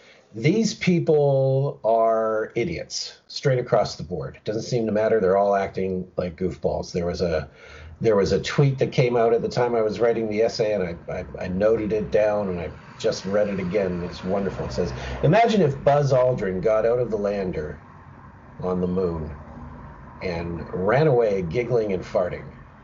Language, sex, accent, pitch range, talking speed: English, male, American, 90-135 Hz, 185 wpm